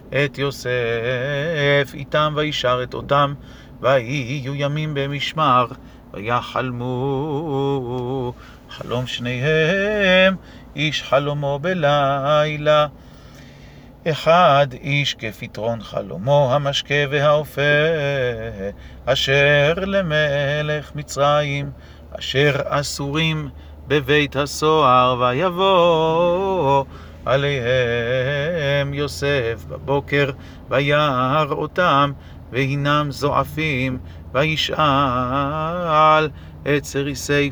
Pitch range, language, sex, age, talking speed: 125-150 Hz, Hebrew, male, 40-59, 60 wpm